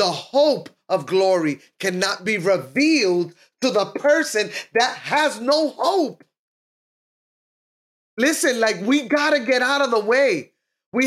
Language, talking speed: English, 130 wpm